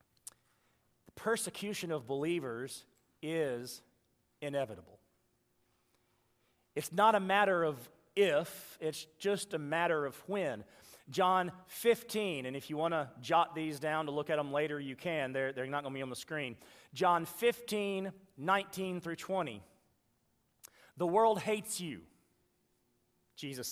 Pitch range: 145-210 Hz